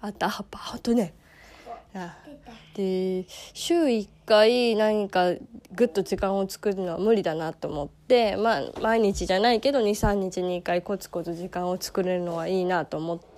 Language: Japanese